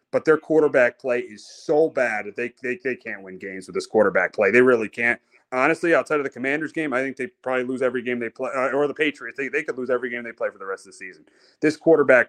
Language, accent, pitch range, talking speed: English, American, 130-195 Hz, 275 wpm